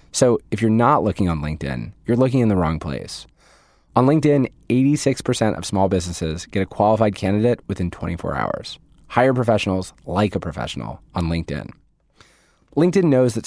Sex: male